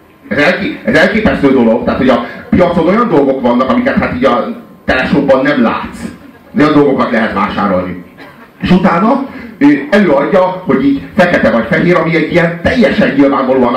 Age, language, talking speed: 40-59, Hungarian, 165 wpm